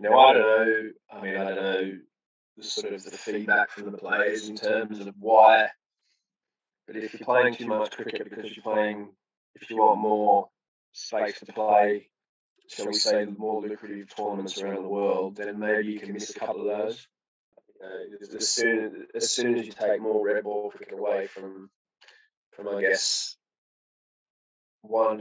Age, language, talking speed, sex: 20-39, English, 175 wpm, male